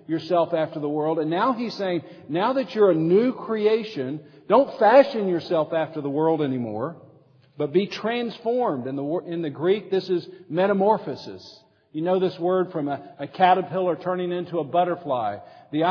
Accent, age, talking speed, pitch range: American, 50-69, 165 wpm, 140-180 Hz